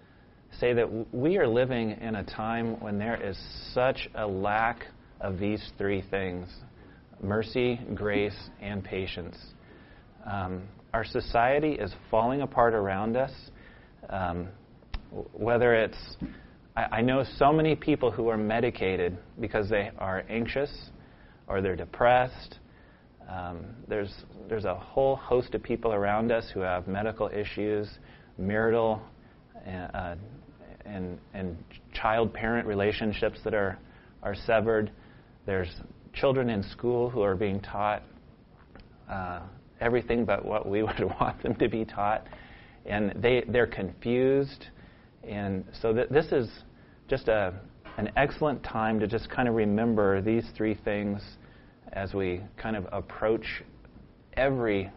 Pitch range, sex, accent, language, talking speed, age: 100-115 Hz, male, American, English, 130 wpm, 30-49